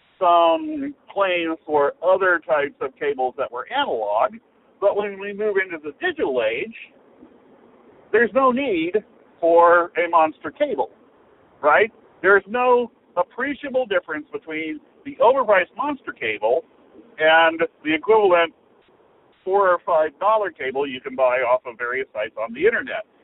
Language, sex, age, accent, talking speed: English, male, 60-79, American, 135 wpm